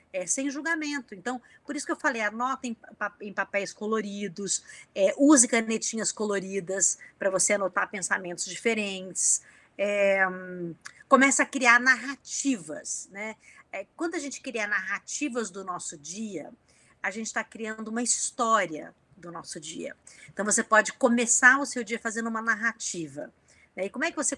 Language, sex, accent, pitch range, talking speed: Portuguese, female, Brazilian, 195-245 Hz, 145 wpm